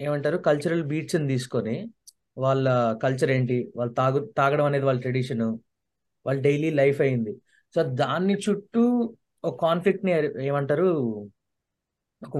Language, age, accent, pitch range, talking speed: Telugu, 20-39, native, 135-195 Hz, 120 wpm